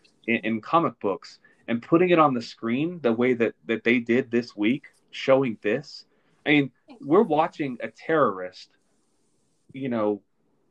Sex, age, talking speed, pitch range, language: male, 30-49, 150 wpm, 115-145 Hz, English